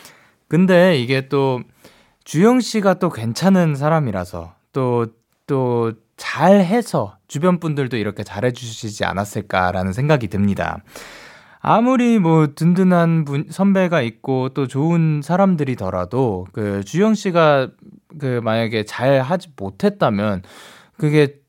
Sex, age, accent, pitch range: male, 20-39, native, 115-175 Hz